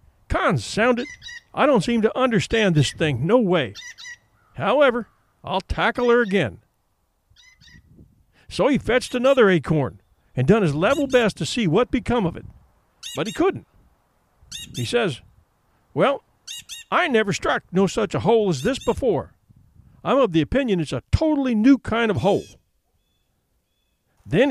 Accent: American